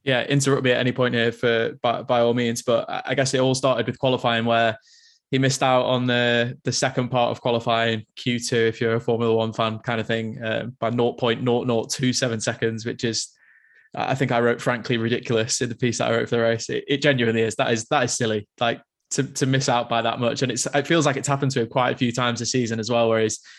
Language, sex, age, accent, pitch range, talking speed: English, male, 20-39, British, 115-130 Hz, 250 wpm